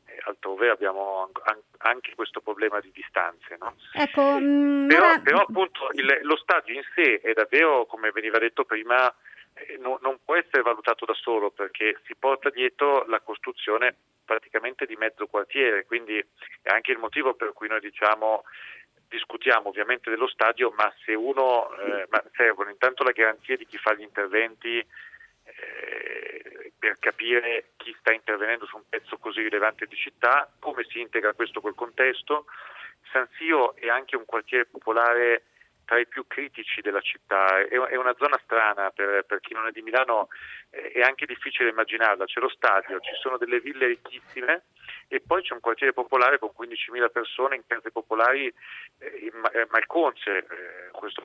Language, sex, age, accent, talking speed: Italian, male, 40-59, native, 155 wpm